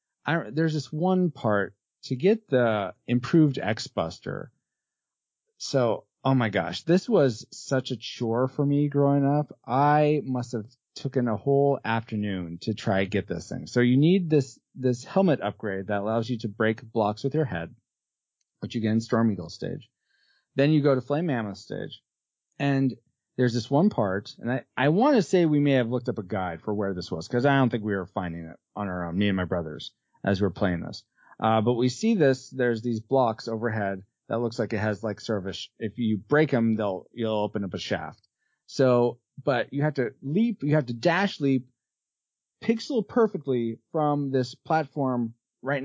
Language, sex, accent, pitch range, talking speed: English, male, American, 110-145 Hz, 195 wpm